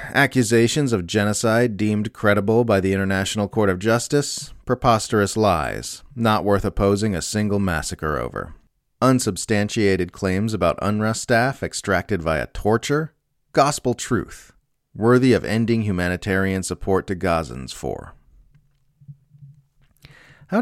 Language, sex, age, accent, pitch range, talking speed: English, male, 30-49, American, 85-120 Hz, 115 wpm